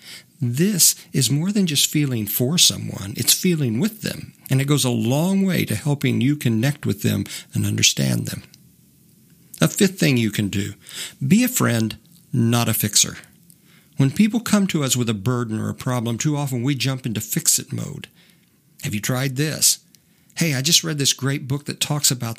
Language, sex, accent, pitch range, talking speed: English, male, American, 115-165 Hz, 190 wpm